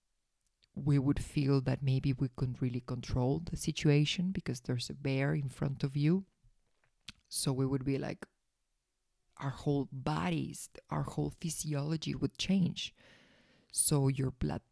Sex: female